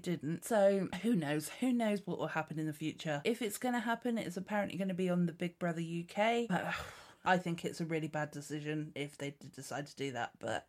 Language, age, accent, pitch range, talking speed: English, 30-49, British, 155-195 Hz, 230 wpm